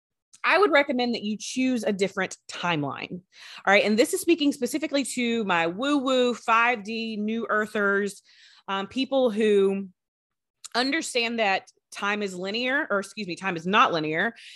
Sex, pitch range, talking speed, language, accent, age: female, 190-245 Hz, 155 wpm, English, American, 30-49